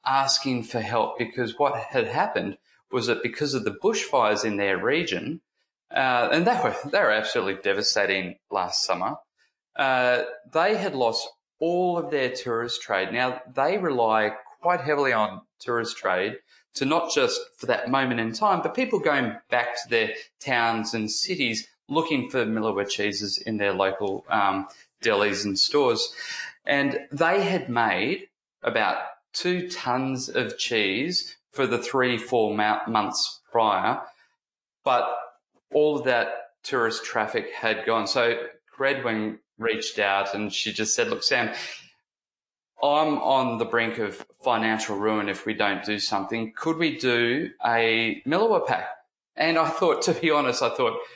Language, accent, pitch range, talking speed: English, Australian, 110-155 Hz, 150 wpm